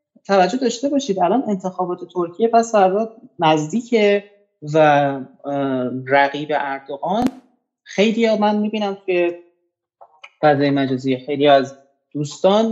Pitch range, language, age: 135-195 Hz, Persian, 30-49